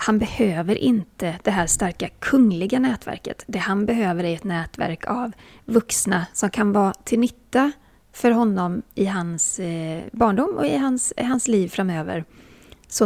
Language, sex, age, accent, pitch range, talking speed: English, female, 30-49, Swedish, 180-230 Hz, 150 wpm